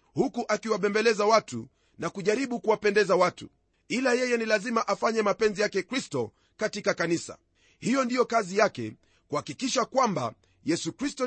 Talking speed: 135 wpm